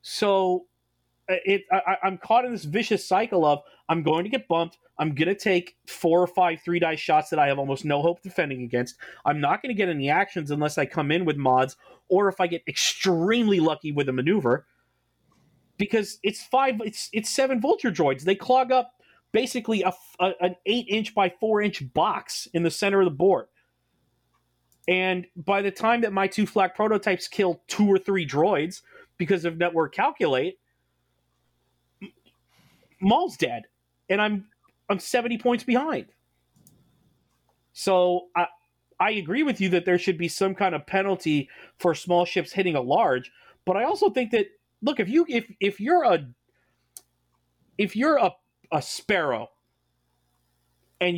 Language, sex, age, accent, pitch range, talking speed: English, male, 30-49, American, 155-210 Hz, 170 wpm